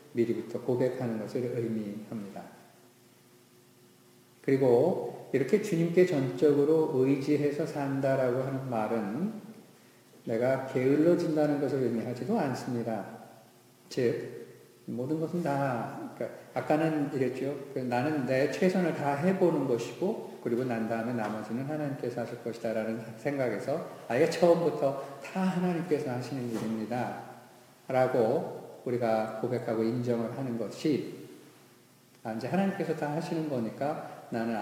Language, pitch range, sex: Korean, 120-145 Hz, male